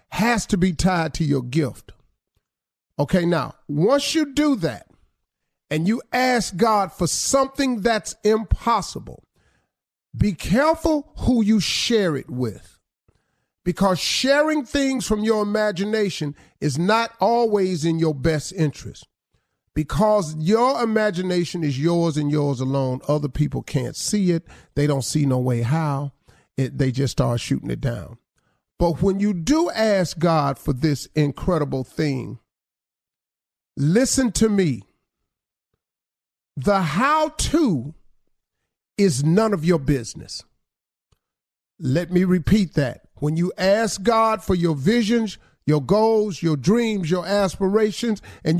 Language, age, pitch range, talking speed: English, 40-59, 155-225 Hz, 130 wpm